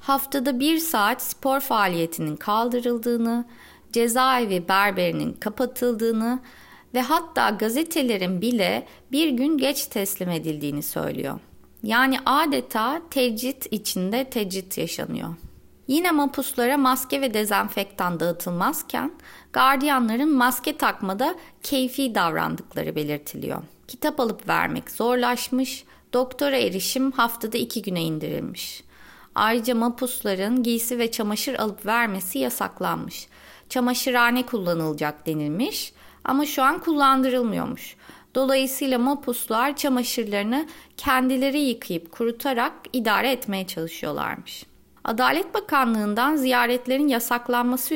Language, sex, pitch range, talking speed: Turkish, female, 215-270 Hz, 95 wpm